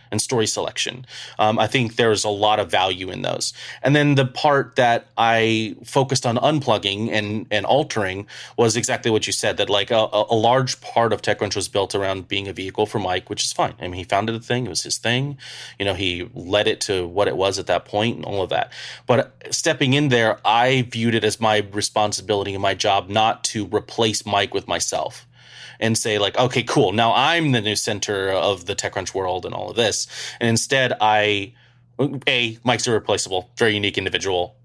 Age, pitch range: 30-49, 105-125 Hz